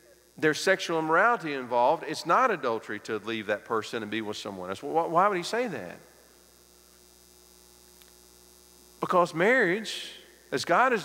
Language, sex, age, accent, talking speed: English, male, 50-69, American, 140 wpm